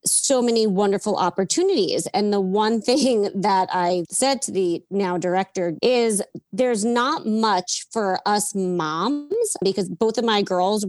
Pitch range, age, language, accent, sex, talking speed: 190-240 Hz, 30-49, English, American, female, 150 wpm